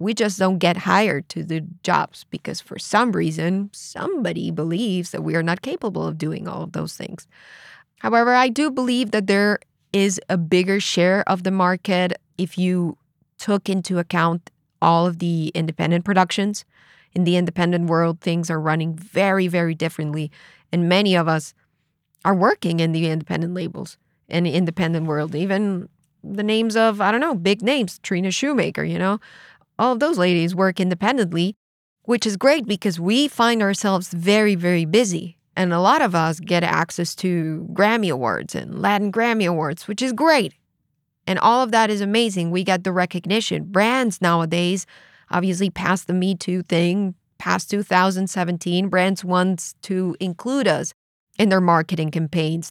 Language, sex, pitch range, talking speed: English, female, 170-205 Hz, 165 wpm